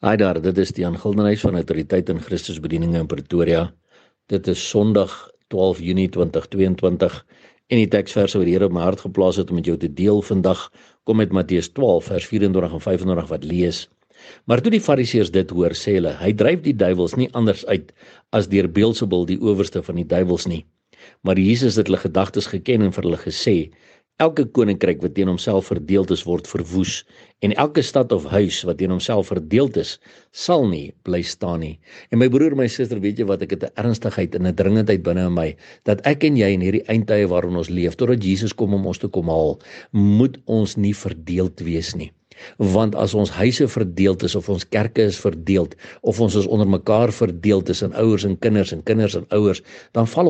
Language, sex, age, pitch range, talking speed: English, male, 60-79, 90-110 Hz, 200 wpm